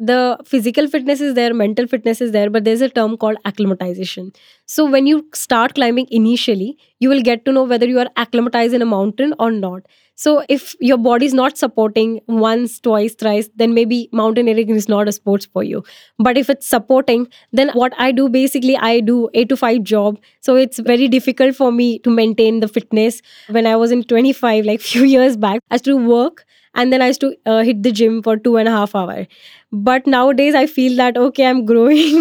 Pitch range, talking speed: 225-260 Hz, 210 wpm